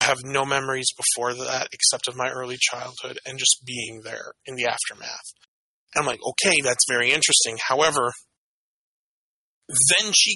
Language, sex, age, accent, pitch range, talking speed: English, male, 20-39, American, 130-175 Hz, 155 wpm